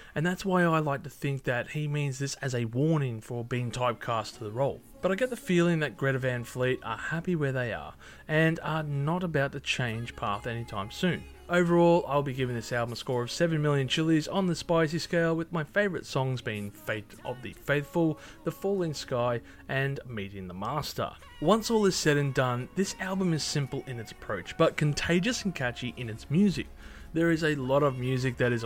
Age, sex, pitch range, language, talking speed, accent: 20-39, male, 120-165 Hz, English, 215 wpm, Australian